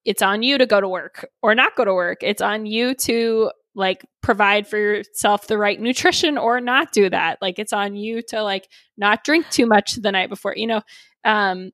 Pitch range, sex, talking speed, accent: 195-240 Hz, female, 220 wpm, American